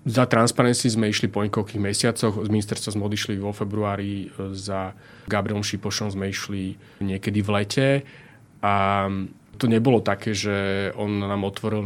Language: Slovak